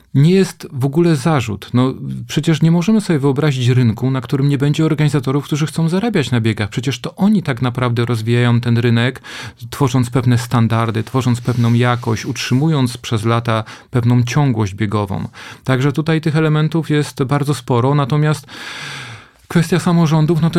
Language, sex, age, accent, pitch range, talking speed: Polish, male, 40-59, native, 120-155 Hz, 155 wpm